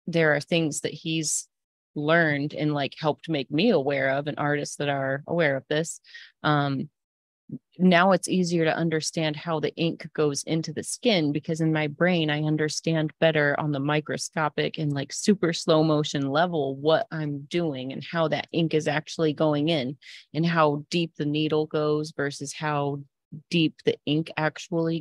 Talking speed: 175 wpm